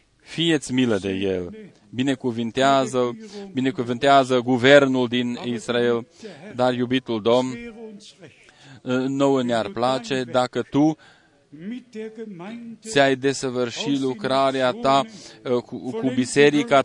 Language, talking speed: Romanian, 80 wpm